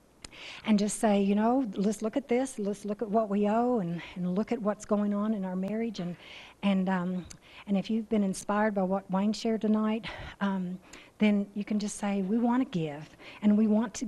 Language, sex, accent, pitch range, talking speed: English, female, American, 180-220 Hz, 220 wpm